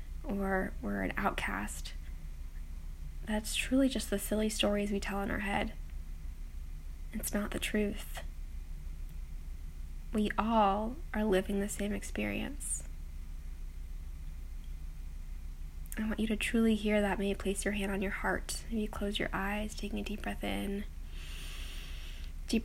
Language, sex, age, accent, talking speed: English, female, 10-29, American, 140 wpm